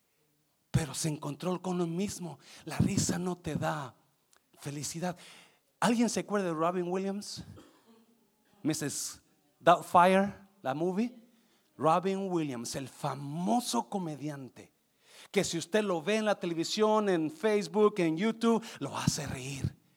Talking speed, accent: 125 wpm, Mexican